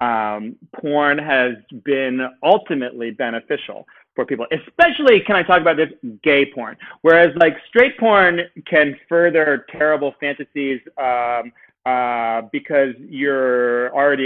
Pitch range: 135-170 Hz